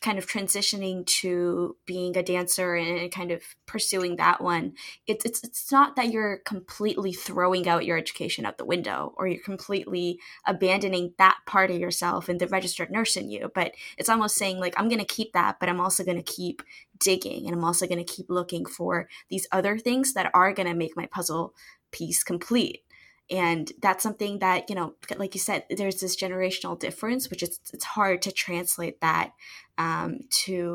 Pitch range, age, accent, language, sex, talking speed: 175-210 Hz, 10-29, American, English, female, 195 wpm